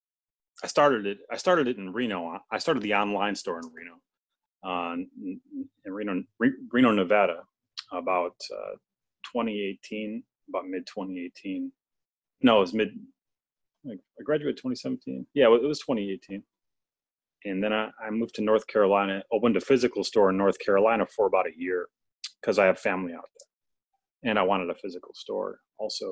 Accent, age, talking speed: American, 30-49, 160 wpm